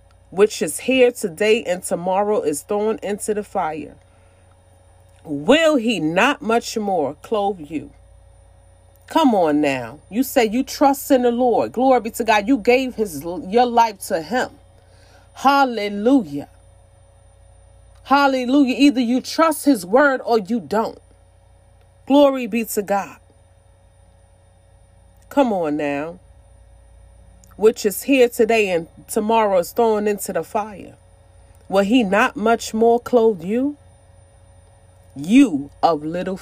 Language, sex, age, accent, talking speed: English, female, 40-59, American, 125 wpm